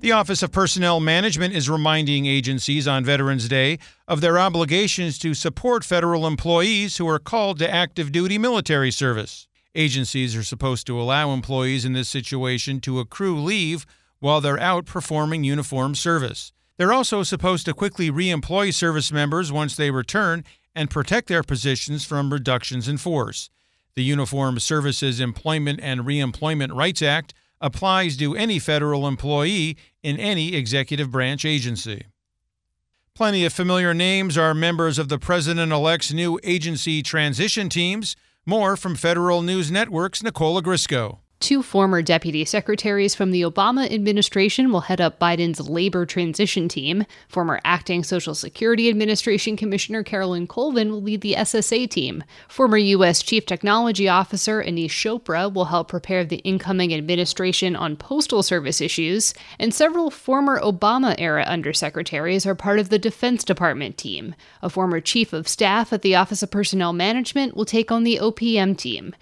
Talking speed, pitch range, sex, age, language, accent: 150 wpm, 150-200 Hz, male, 50-69, English, American